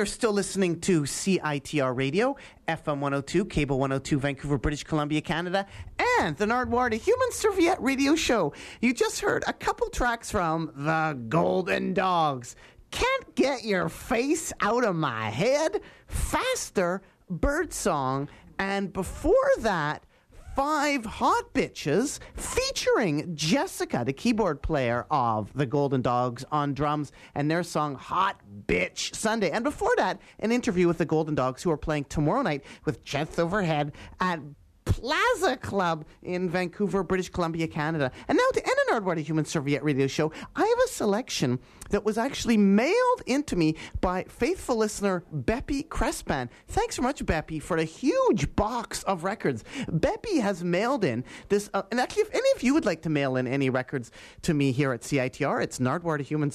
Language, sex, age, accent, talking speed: English, male, 40-59, American, 165 wpm